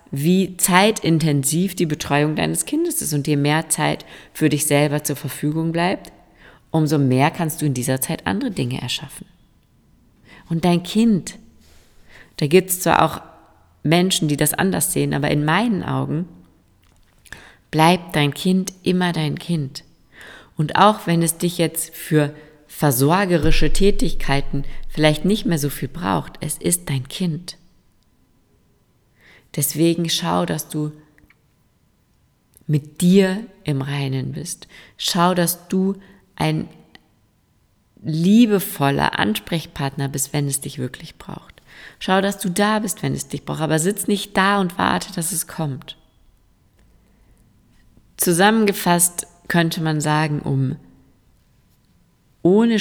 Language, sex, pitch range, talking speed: German, female, 140-180 Hz, 130 wpm